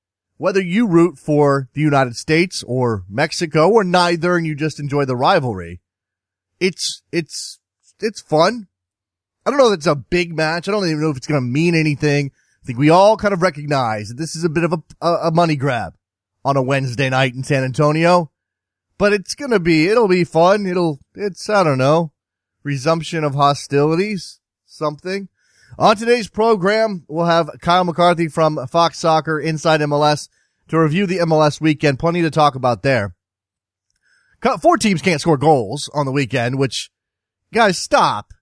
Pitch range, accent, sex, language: 130-180 Hz, American, male, English